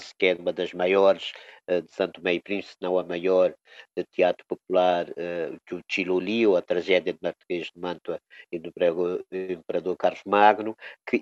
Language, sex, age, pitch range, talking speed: Portuguese, male, 50-69, 95-115 Hz, 160 wpm